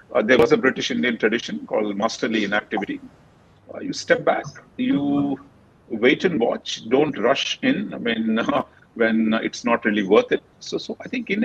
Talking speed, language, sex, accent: 195 wpm, English, male, Indian